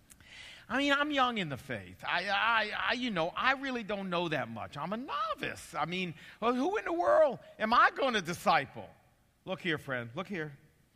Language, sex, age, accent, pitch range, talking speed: English, male, 50-69, American, 170-275 Hz, 210 wpm